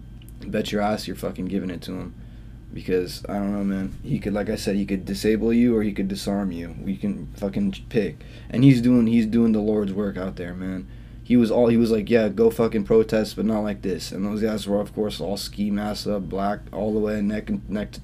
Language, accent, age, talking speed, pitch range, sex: English, American, 20-39, 250 wpm, 95-115 Hz, male